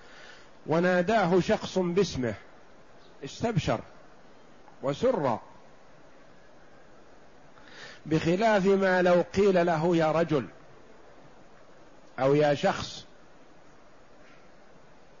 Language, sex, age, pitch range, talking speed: Arabic, male, 50-69, 140-180 Hz, 60 wpm